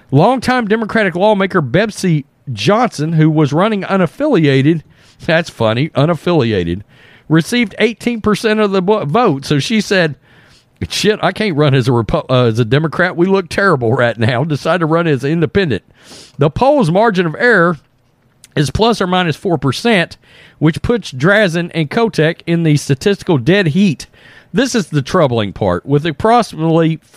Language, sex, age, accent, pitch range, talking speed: English, male, 50-69, American, 150-210 Hz, 150 wpm